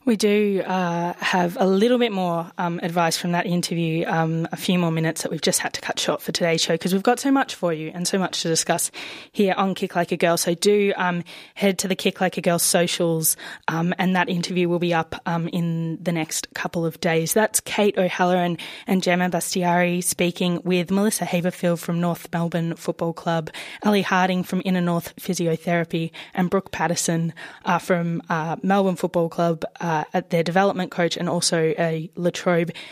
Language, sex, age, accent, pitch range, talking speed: English, female, 20-39, Australian, 170-195 Hz, 205 wpm